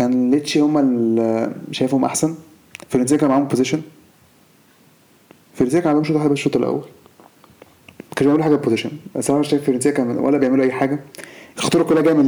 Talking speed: 155 wpm